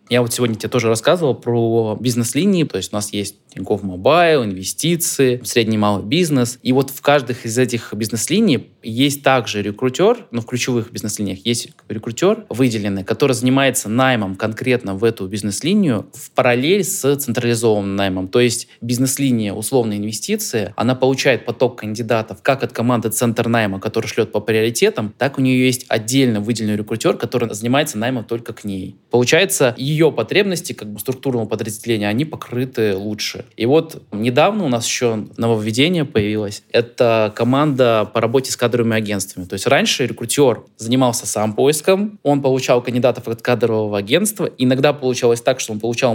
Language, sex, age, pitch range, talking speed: Russian, male, 20-39, 110-135 Hz, 160 wpm